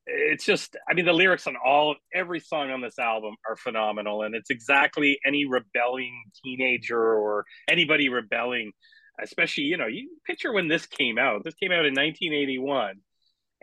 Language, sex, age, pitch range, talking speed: English, male, 30-49, 110-140 Hz, 170 wpm